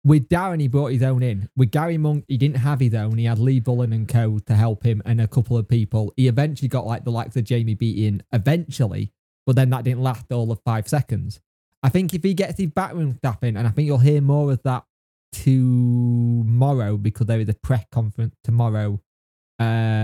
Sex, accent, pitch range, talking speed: male, British, 115-145 Hz, 225 wpm